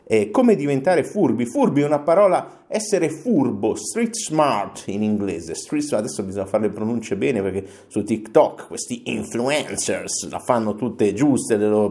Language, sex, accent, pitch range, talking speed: Italian, male, native, 105-170 Hz, 165 wpm